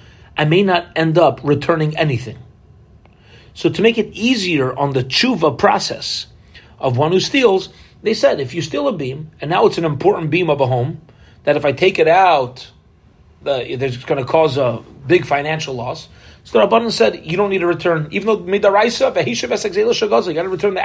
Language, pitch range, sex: English, 135-175 Hz, male